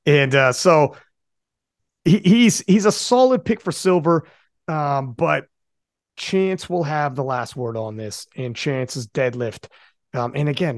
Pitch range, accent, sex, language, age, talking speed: 130-170 Hz, American, male, English, 30-49, 155 wpm